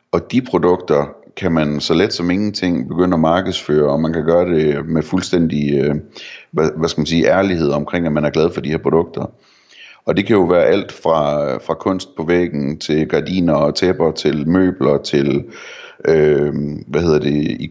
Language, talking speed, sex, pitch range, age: Danish, 190 wpm, male, 75-90 Hz, 30-49